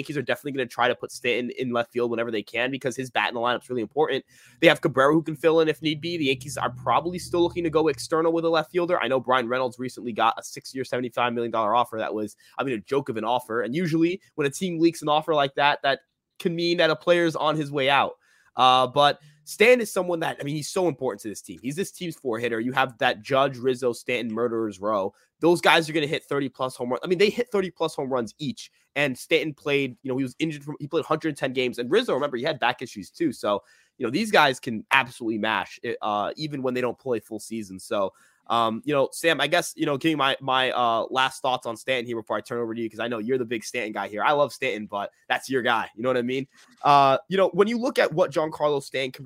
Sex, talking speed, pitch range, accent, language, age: male, 280 wpm, 120-155 Hz, American, English, 20-39